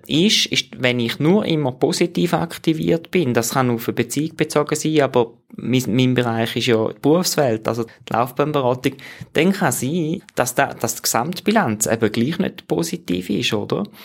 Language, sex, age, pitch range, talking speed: German, male, 20-39, 115-140 Hz, 180 wpm